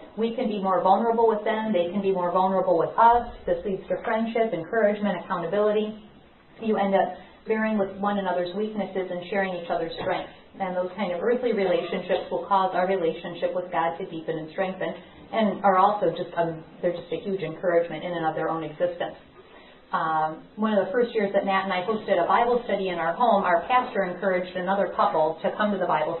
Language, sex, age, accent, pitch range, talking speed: English, female, 40-59, American, 180-225 Hz, 205 wpm